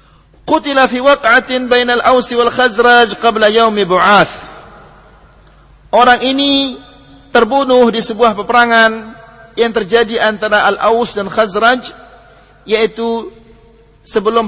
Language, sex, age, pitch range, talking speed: Malay, male, 50-69, 220-245 Hz, 100 wpm